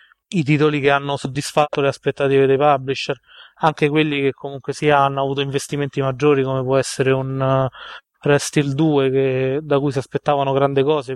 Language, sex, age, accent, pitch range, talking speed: Italian, male, 20-39, native, 135-155 Hz, 185 wpm